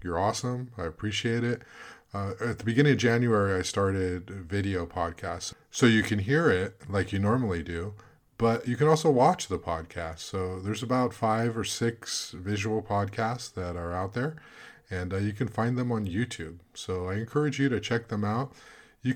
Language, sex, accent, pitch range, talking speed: English, male, American, 100-130 Hz, 190 wpm